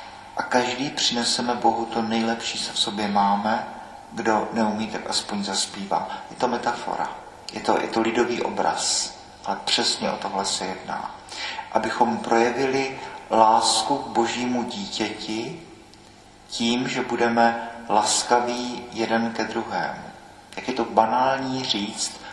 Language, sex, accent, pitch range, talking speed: Czech, male, native, 110-125 Hz, 130 wpm